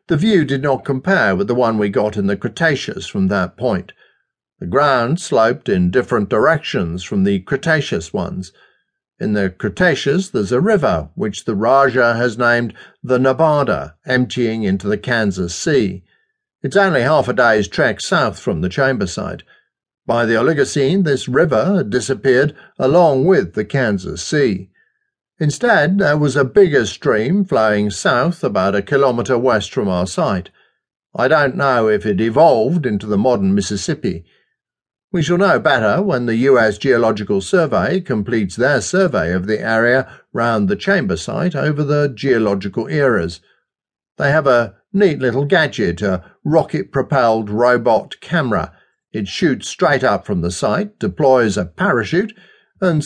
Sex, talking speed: male, 155 wpm